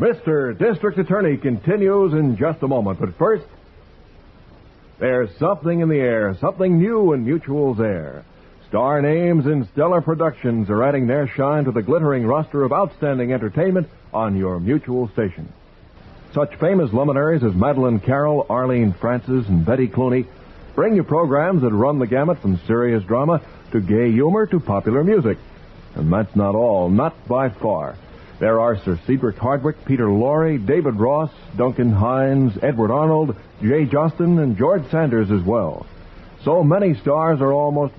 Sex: male